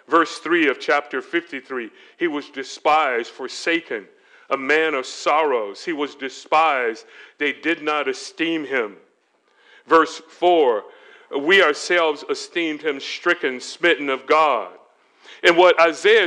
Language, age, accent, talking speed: English, 40-59, American, 125 wpm